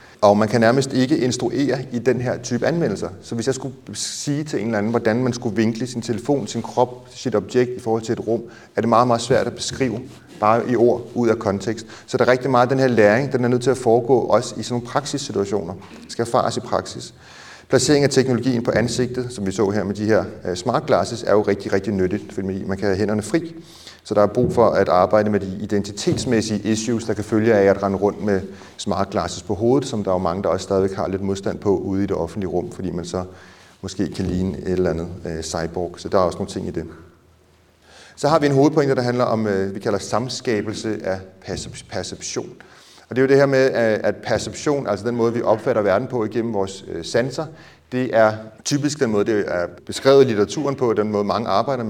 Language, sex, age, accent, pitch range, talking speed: Danish, male, 30-49, native, 95-125 Hz, 230 wpm